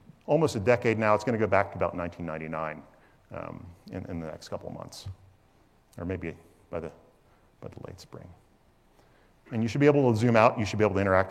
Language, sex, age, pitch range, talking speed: English, male, 40-59, 95-120 Hz, 225 wpm